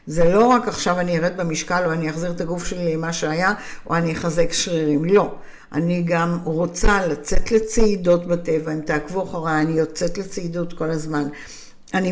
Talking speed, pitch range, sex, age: 175 wpm, 165-210 Hz, female, 60-79